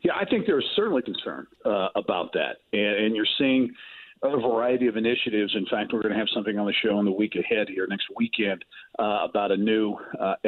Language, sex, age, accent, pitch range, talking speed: English, male, 40-59, American, 105-125 Hz, 230 wpm